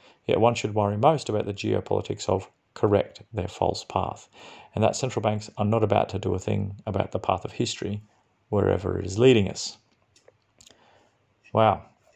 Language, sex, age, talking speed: English, male, 30-49, 175 wpm